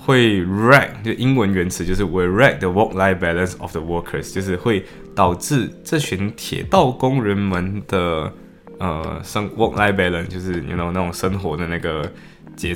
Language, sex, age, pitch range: Chinese, male, 20-39, 85-110 Hz